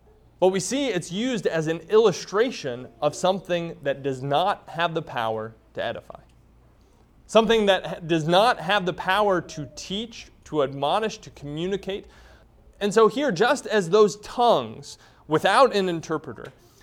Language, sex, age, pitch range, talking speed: English, male, 30-49, 155-220 Hz, 145 wpm